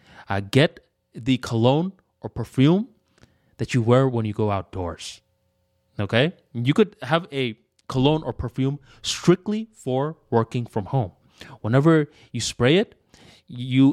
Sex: male